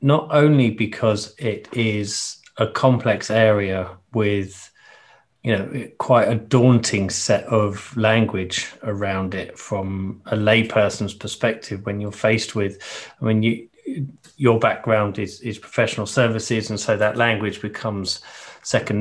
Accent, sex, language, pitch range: British, male, English, 105-120 Hz